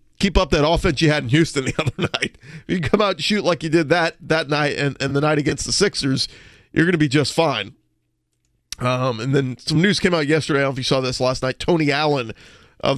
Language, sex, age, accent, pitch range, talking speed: English, male, 40-59, American, 125-155 Hz, 260 wpm